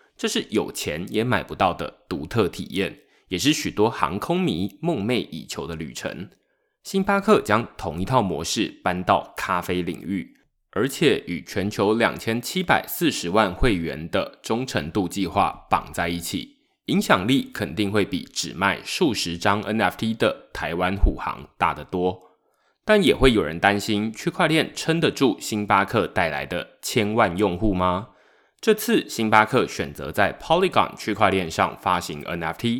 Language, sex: Chinese, male